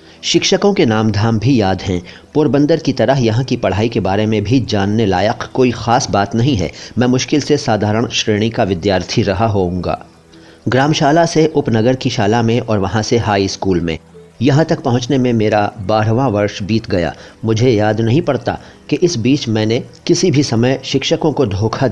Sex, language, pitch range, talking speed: male, Hindi, 105-135 Hz, 185 wpm